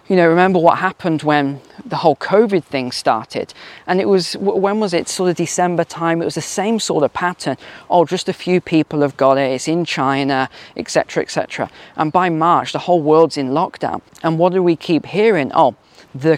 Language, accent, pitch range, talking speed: English, British, 145-185 Hz, 210 wpm